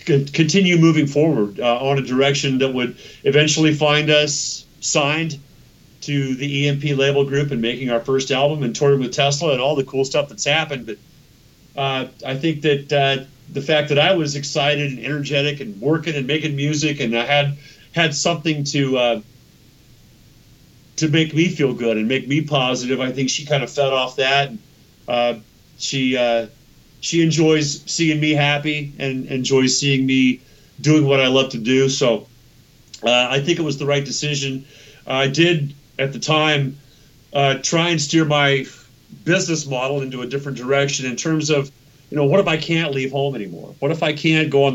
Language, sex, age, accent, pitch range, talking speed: English, male, 40-59, American, 130-150 Hz, 185 wpm